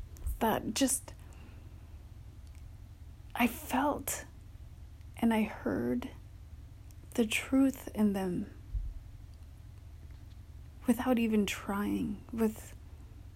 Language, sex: English, female